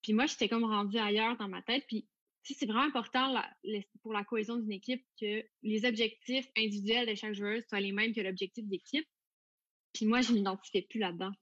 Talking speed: 215 wpm